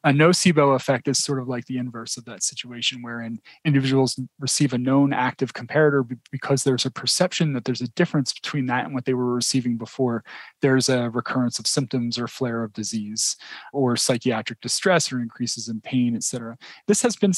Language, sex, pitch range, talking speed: English, male, 125-150 Hz, 195 wpm